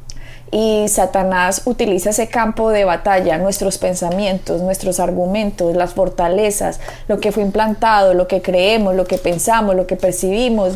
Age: 20-39